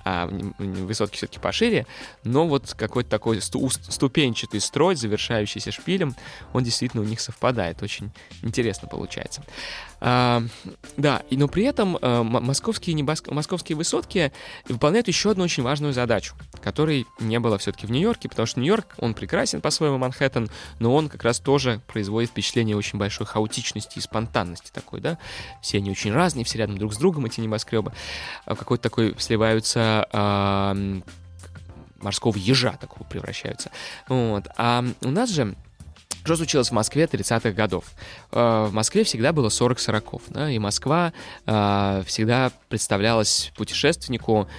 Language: Russian